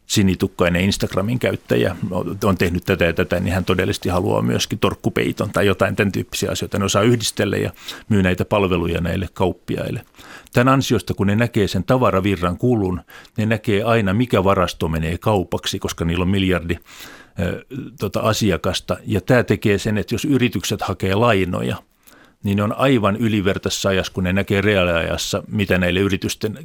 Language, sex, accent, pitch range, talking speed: Finnish, male, native, 95-110 Hz, 160 wpm